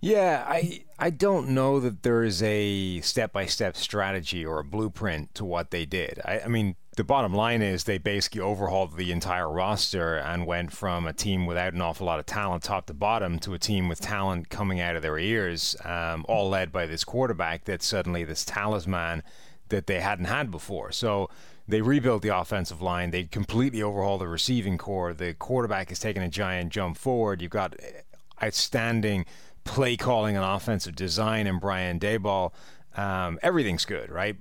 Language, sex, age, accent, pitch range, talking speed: English, male, 30-49, American, 90-110 Hz, 185 wpm